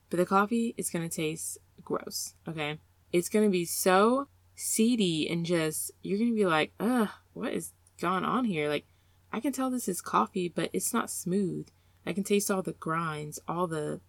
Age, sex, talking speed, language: 20-39, female, 185 wpm, English